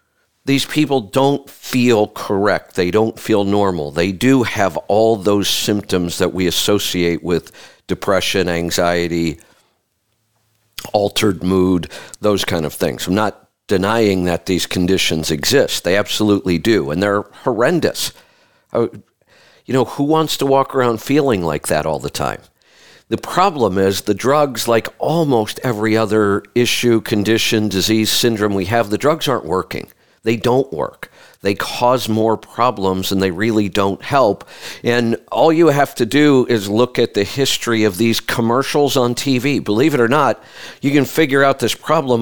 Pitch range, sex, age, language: 100-135 Hz, male, 50-69, English